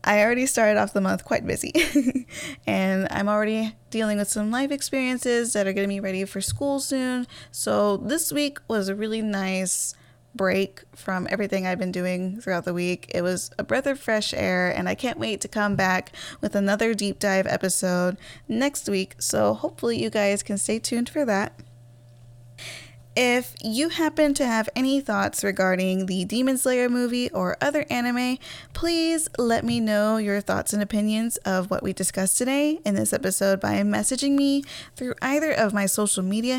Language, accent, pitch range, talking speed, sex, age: English, American, 190-255 Hz, 180 wpm, female, 10-29